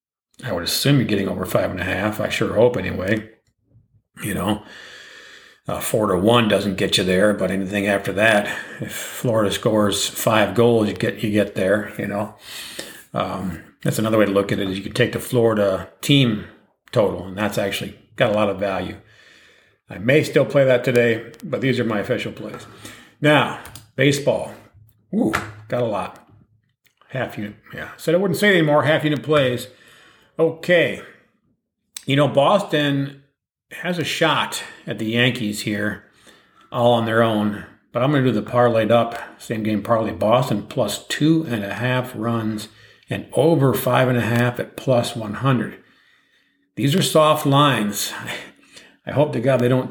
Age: 50-69